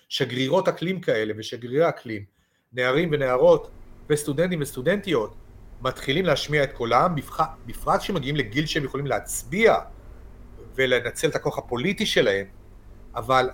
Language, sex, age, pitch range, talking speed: Hebrew, male, 40-59, 120-165 Hz, 110 wpm